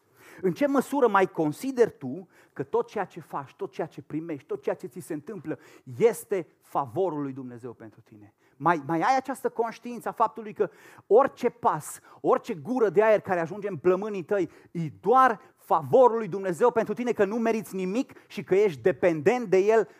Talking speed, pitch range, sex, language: 190 wpm, 140-210 Hz, male, Romanian